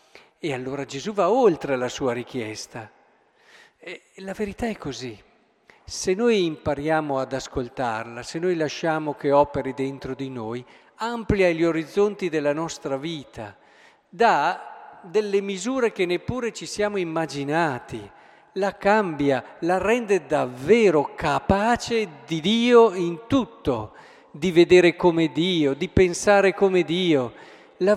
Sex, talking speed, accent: male, 125 wpm, native